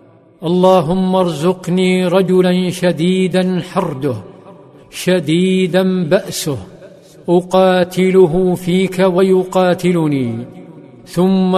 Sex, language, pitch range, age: male, Arabic, 170-185 Hz, 50-69